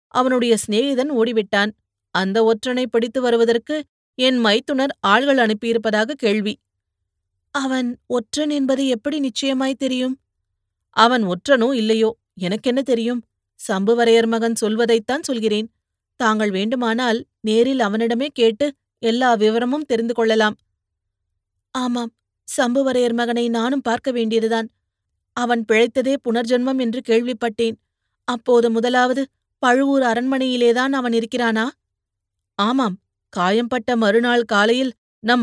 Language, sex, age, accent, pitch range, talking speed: Tamil, female, 30-49, native, 215-260 Hz, 100 wpm